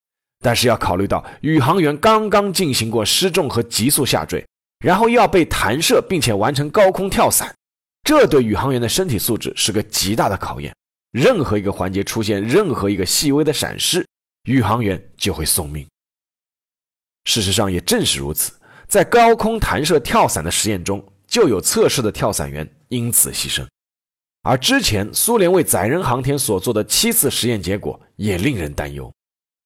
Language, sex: Chinese, male